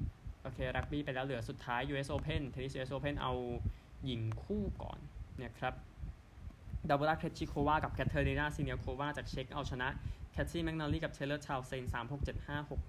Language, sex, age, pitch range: Thai, male, 20-39, 115-140 Hz